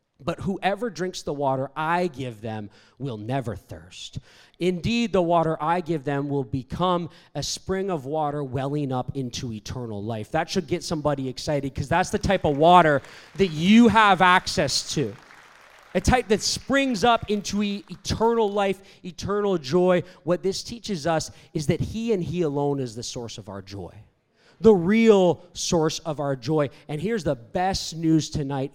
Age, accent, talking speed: 30-49, American, 170 wpm